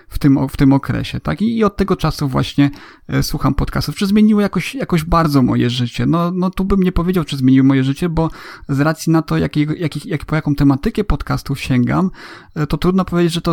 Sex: male